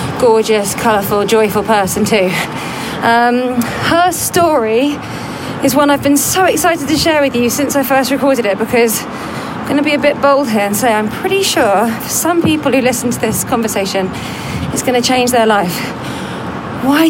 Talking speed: 170 wpm